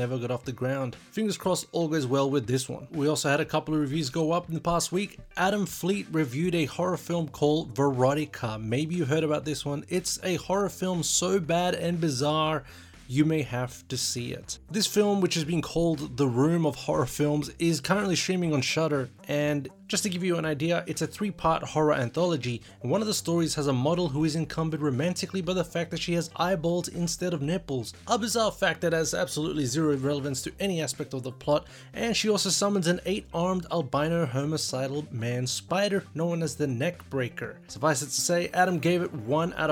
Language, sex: English, male